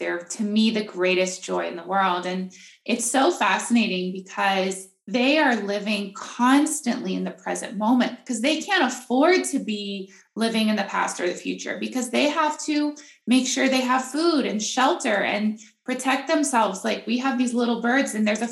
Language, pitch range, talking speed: English, 205-275 Hz, 190 wpm